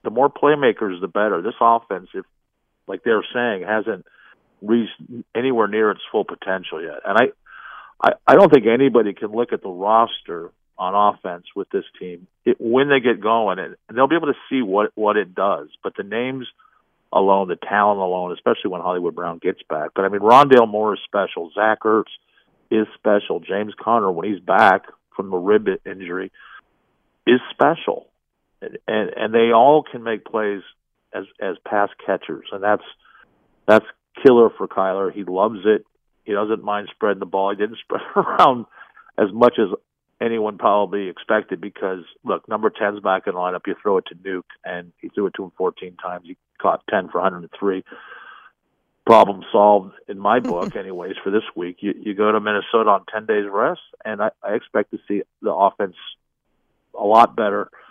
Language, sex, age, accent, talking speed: English, male, 50-69, American, 190 wpm